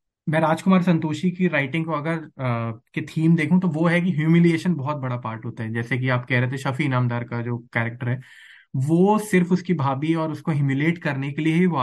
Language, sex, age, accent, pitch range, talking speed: Hindi, male, 20-39, native, 125-170 Hz, 220 wpm